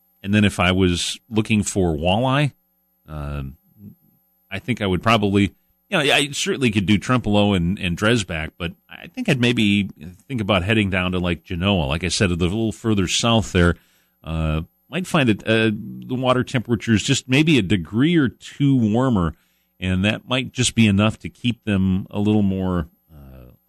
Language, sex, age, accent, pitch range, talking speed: English, male, 40-59, American, 80-110 Hz, 185 wpm